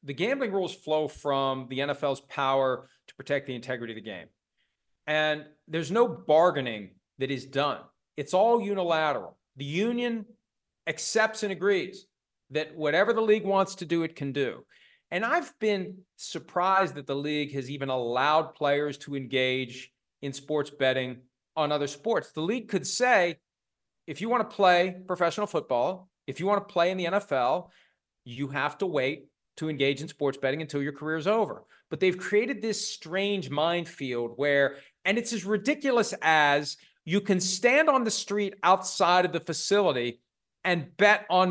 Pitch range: 145-200 Hz